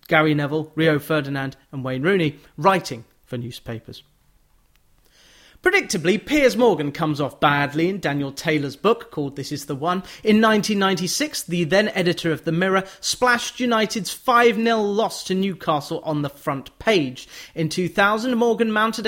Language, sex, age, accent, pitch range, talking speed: English, male, 30-49, British, 155-215 Hz, 145 wpm